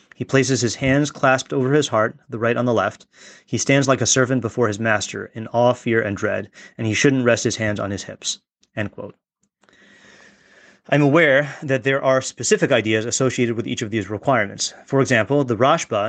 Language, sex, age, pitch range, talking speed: English, male, 30-49, 115-135 Hz, 200 wpm